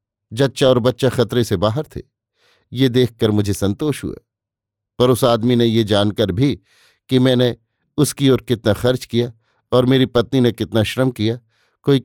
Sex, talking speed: male, 170 wpm